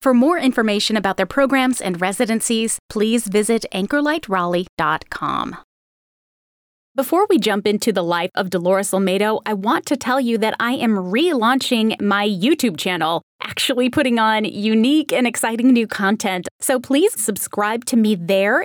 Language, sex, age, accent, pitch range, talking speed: English, female, 20-39, American, 195-250 Hz, 150 wpm